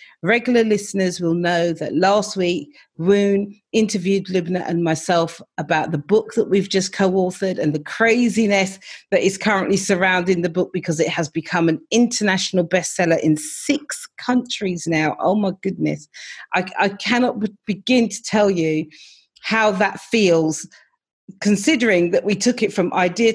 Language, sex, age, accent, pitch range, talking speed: English, female, 40-59, British, 175-225 Hz, 155 wpm